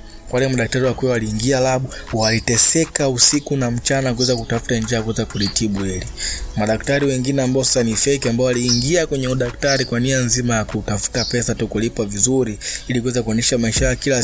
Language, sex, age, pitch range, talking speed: Swahili, male, 20-39, 105-125 Hz, 150 wpm